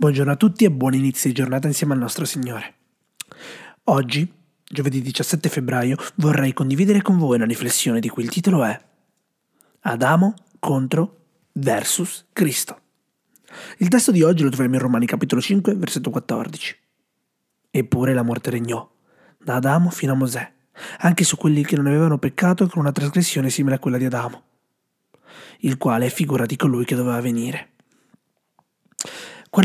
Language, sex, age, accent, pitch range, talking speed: Italian, male, 30-49, native, 130-185 Hz, 155 wpm